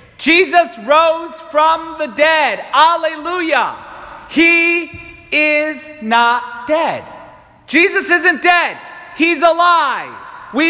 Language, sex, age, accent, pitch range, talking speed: English, male, 40-59, American, 235-325 Hz, 90 wpm